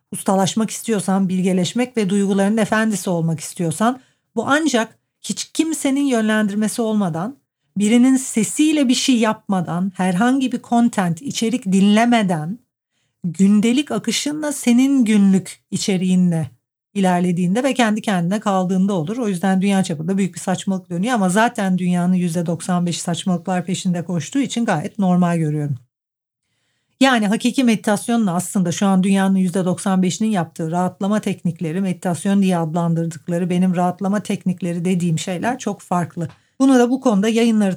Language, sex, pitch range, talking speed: Turkish, female, 180-220 Hz, 125 wpm